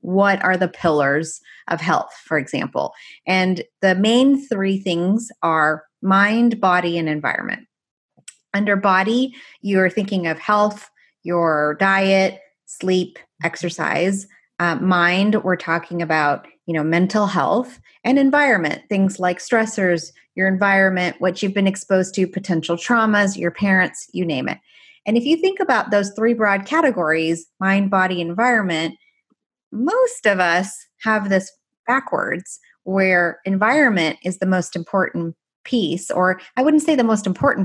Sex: female